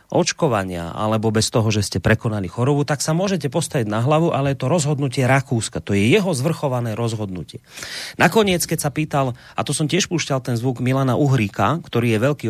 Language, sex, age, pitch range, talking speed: Slovak, male, 30-49, 120-155 Hz, 190 wpm